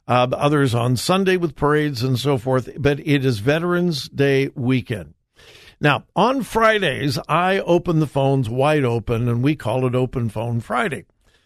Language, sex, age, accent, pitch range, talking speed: English, male, 60-79, American, 130-180 Hz, 160 wpm